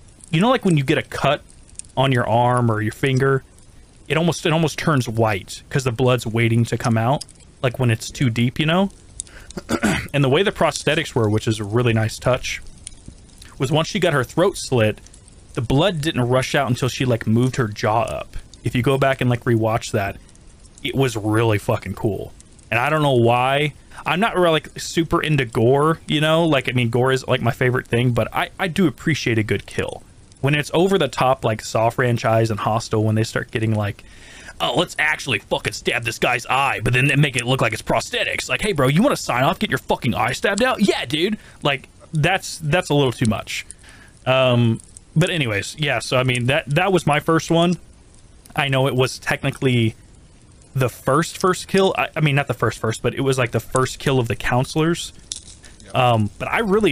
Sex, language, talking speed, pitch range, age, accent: male, English, 215 wpm, 110-150 Hz, 30-49, American